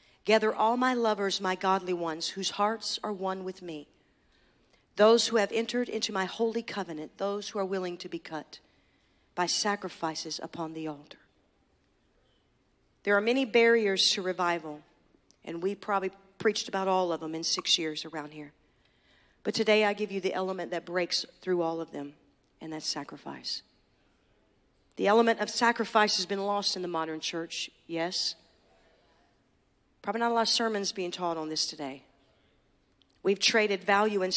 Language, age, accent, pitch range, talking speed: English, 50-69, American, 165-210 Hz, 165 wpm